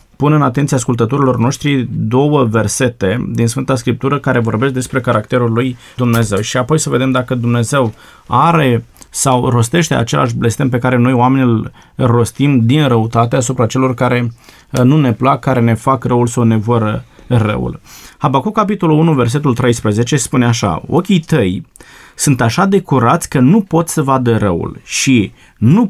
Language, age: Romanian, 20-39